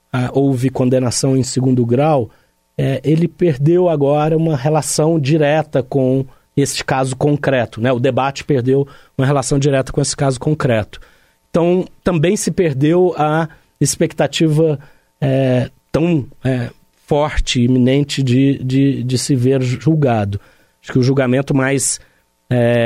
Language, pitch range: Portuguese, 120-140 Hz